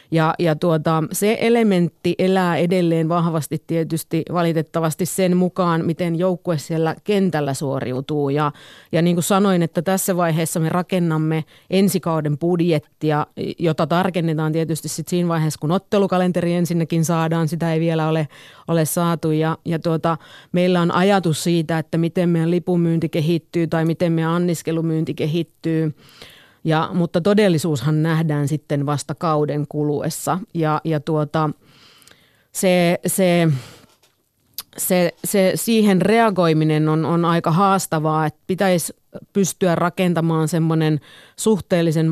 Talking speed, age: 125 wpm, 30-49